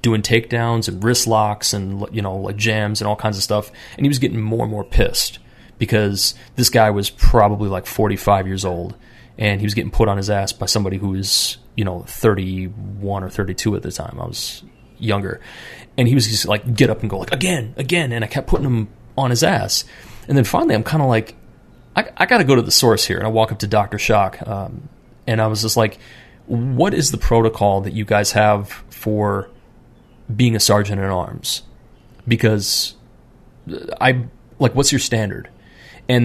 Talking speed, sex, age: 205 wpm, male, 30-49